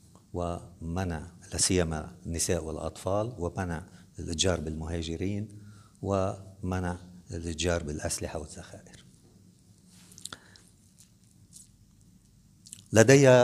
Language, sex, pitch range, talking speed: Arabic, male, 85-100 Hz, 55 wpm